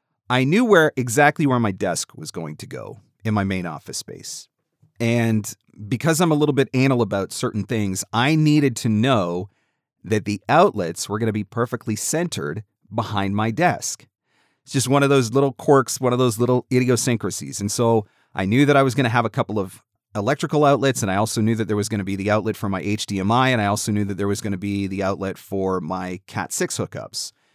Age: 30-49